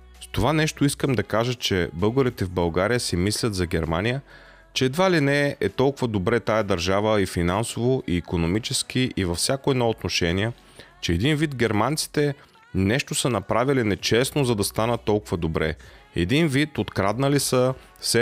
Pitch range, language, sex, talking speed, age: 95-135 Hz, Bulgarian, male, 165 wpm, 30-49